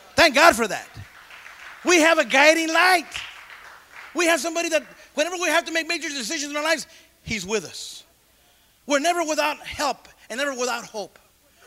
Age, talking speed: 40-59, 175 wpm